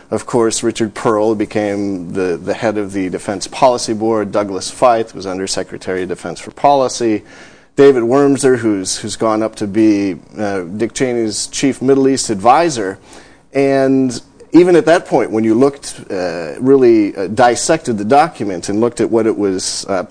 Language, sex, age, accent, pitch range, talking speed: English, male, 40-59, American, 100-130 Hz, 170 wpm